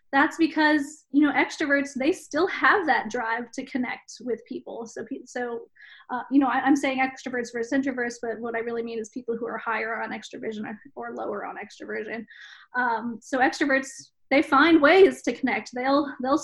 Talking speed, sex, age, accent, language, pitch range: 190 wpm, female, 20-39, American, English, 235-285 Hz